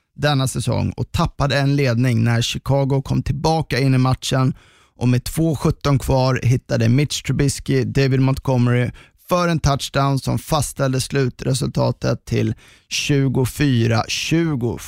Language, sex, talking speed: Swedish, male, 120 wpm